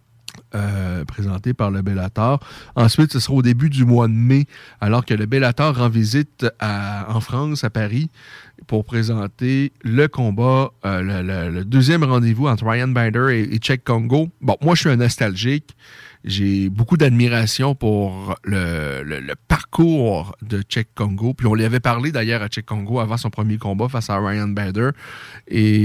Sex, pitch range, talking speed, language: male, 105-135 Hz, 180 wpm, French